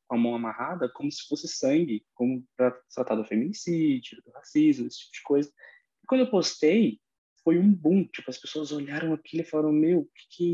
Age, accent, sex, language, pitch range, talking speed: 20-39, Brazilian, male, Portuguese, 120-160 Hz, 210 wpm